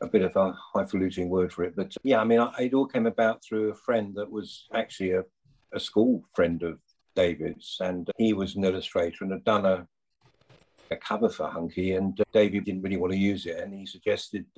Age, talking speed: 50-69, 215 wpm